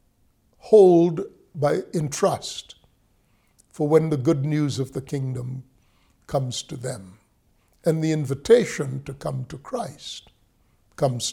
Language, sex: English, male